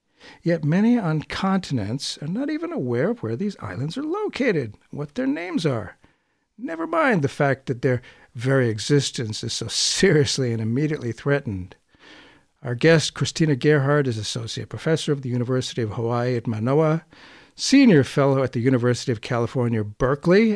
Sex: male